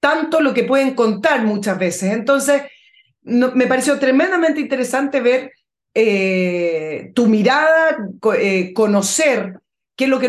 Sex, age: female, 30-49